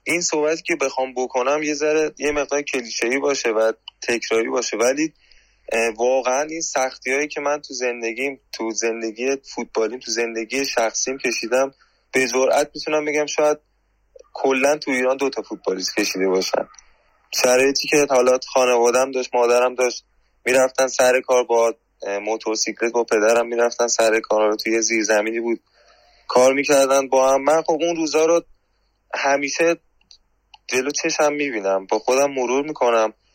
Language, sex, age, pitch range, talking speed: Persian, male, 20-39, 115-145 Hz, 140 wpm